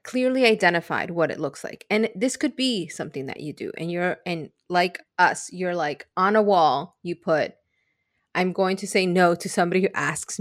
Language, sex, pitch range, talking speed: English, female, 175-225 Hz, 200 wpm